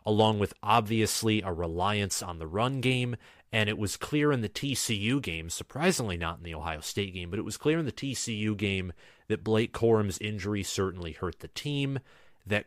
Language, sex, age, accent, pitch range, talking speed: English, male, 30-49, American, 90-115 Hz, 195 wpm